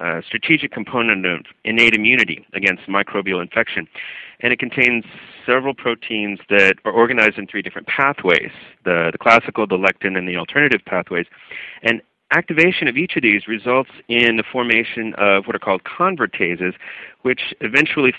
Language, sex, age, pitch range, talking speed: English, male, 40-59, 95-120 Hz, 155 wpm